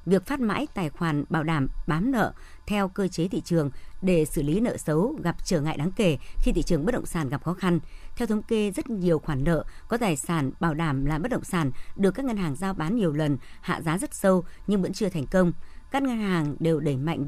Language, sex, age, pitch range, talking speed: Vietnamese, male, 60-79, 155-195 Hz, 250 wpm